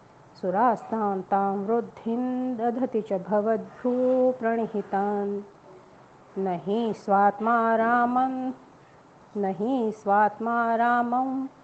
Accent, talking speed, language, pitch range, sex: Indian, 65 wpm, English, 205-245 Hz, female